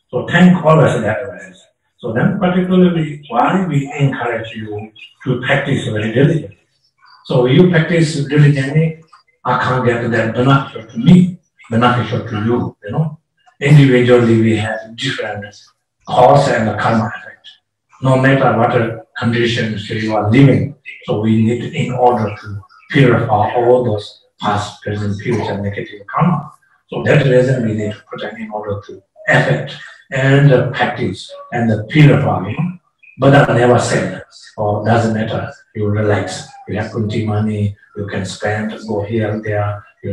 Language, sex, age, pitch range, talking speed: English, male, 60-79, 110-150 Hz, 155 wpm